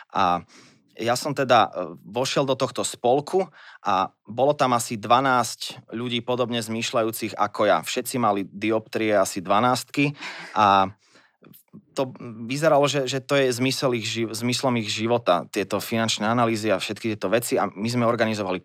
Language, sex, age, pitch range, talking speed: Slovak, male, 20-39, 115-135 Hz, 150 wpm